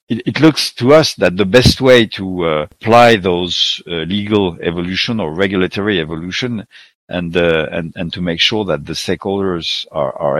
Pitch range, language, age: 85-110 Hz, English, 50-69